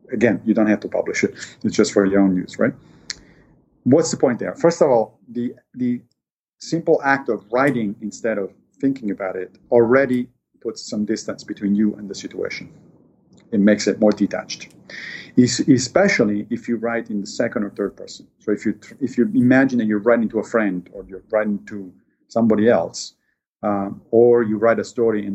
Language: English